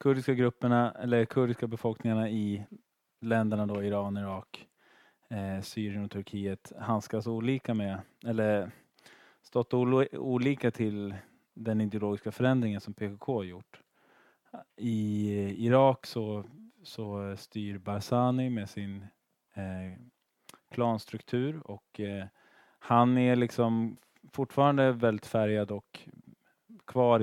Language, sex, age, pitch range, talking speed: Swedish, male, 20-39, 100-120 Hz, 100 wpm